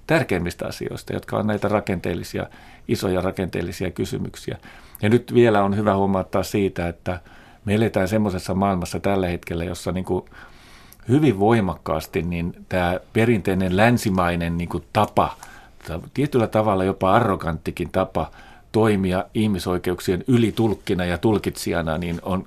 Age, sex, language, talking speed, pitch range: 40-59, male, Finnish, 120 wpm, 90-110 Hz